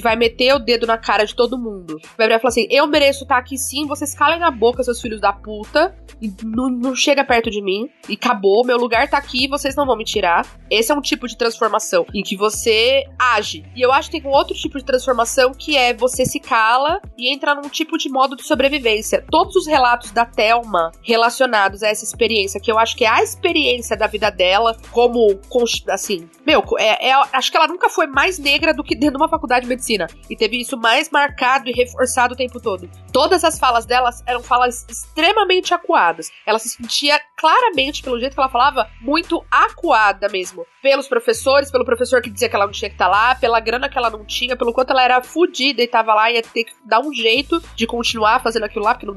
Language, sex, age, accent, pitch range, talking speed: Portuguese, female, 20-39, Brazilian, 225-295 Hz, 230 wpm